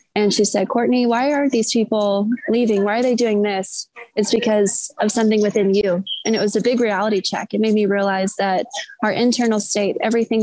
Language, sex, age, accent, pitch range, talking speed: English, female, 20-39, American, 200-230 Hz, 205 wpm